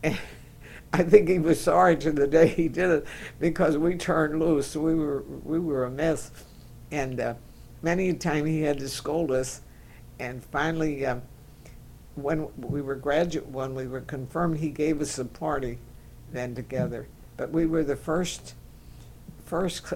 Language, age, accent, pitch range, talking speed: English, 60-79, American, 125-160 Hz, 170 wpm